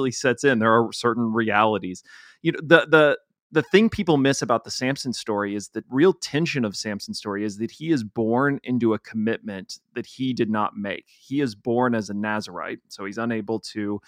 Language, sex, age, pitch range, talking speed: English, male, 30-49, 105-125 Hz, 205 wpm